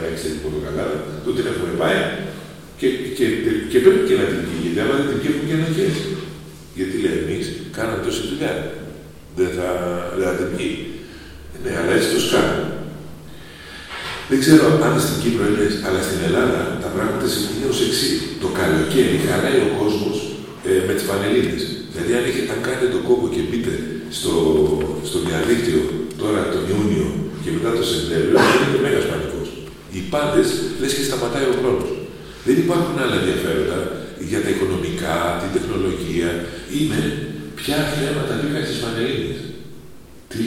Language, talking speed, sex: Greek, 160 wpm, male